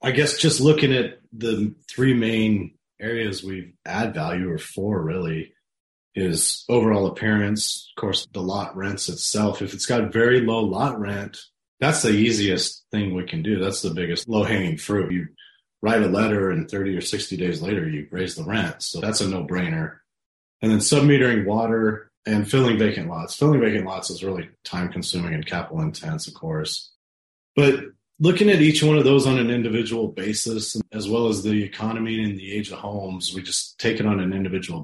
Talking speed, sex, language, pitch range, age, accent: 185 wpm, male, English, 95-115 Hz, 30-49, American